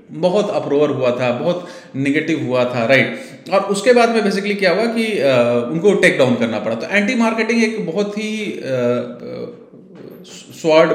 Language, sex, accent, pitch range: Hindi, male, native, 135-205 Hz